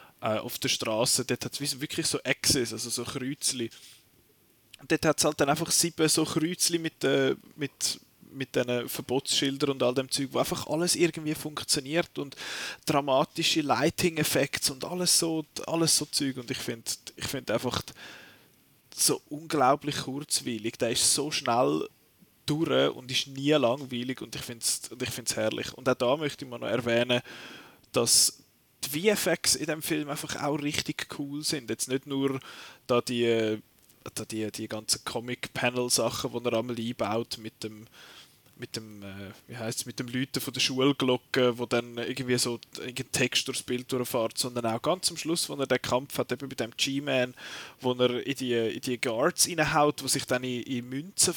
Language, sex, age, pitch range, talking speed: German, male, 20-39, 120-150 Hz, 170 wpm